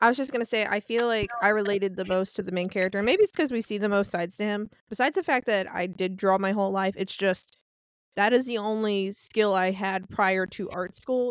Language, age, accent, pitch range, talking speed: English, 20-39, American, 190-220 Hz, 265 wpm